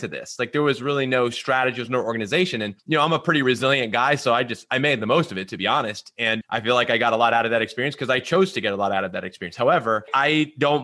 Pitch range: 120-150 Hz